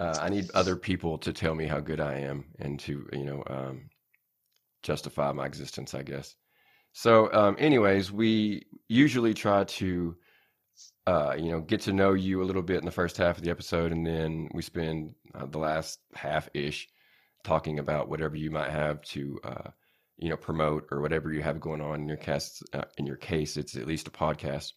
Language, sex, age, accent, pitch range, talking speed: English, male, 30-49, American, 75-85 Hz, 200 wpm